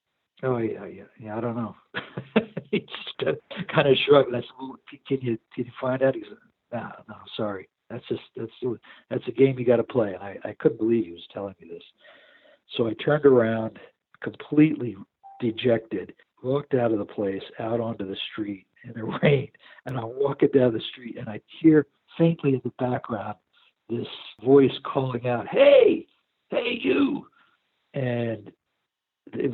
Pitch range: 115-145 Hz